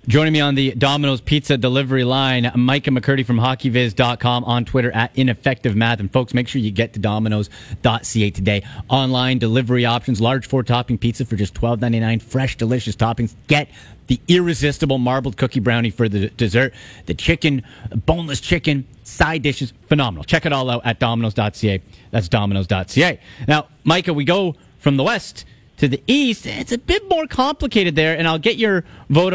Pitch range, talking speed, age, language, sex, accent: 120-160 Hz, 170 wpm, 30-49, English, male, American